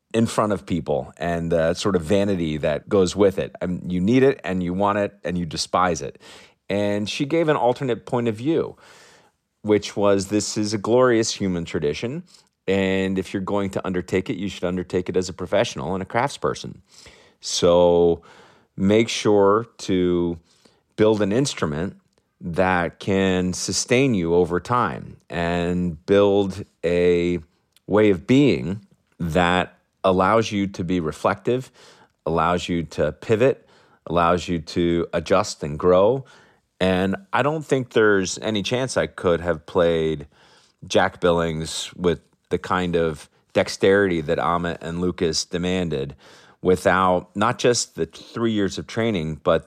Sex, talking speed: male, 150 wpm